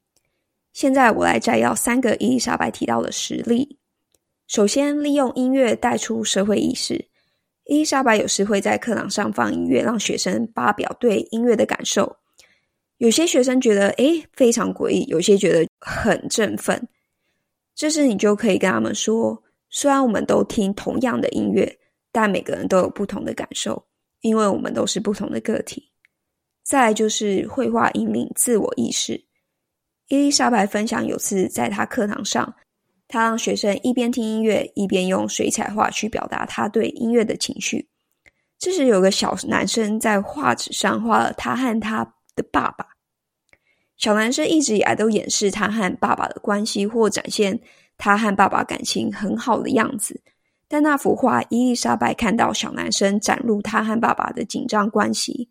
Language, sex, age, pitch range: English, female, 20-39, 205-260 Hz